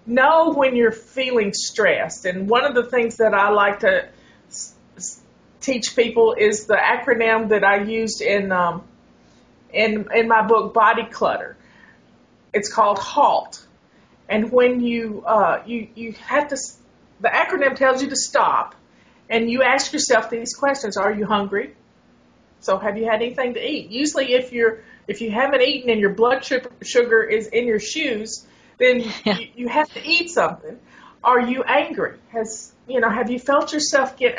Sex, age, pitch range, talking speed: female, 40-59, 220-275 Hz, 170 wpm